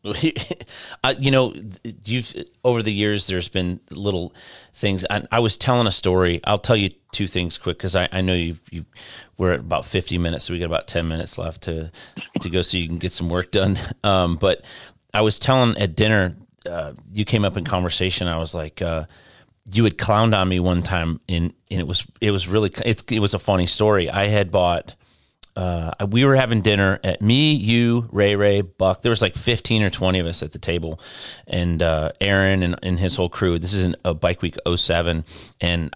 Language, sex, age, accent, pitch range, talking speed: English, male, 30-49, American, 85-110 Hz, 215 wpm